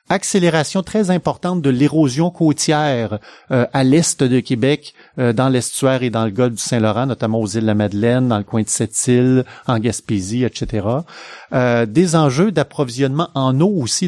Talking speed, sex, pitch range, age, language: 175 wpm, male, 120-155 Hz, 30-49, French